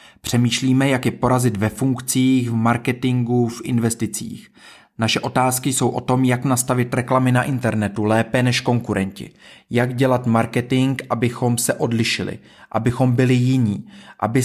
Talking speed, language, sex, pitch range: 135 wpm, Czech, male, 120-140 Hz